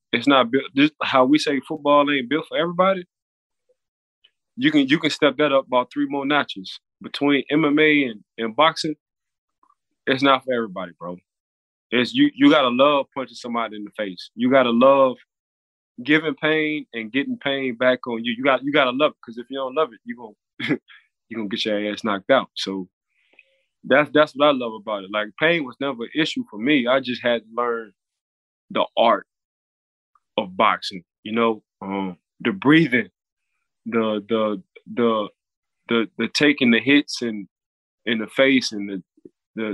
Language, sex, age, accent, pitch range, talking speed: English, male, 20-39, American, 110-145 Hz, 185 wpm